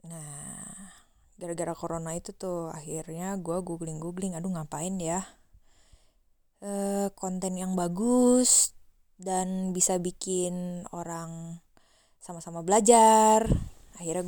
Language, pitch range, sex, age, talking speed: Indonesian, 170-205 Hz, female, 20-39, 90 wpm